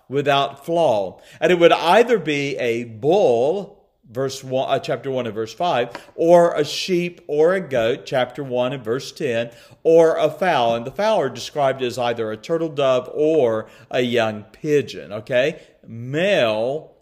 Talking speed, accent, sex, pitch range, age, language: 165 wpm, American, male, 125-185 Hz, 50-69, English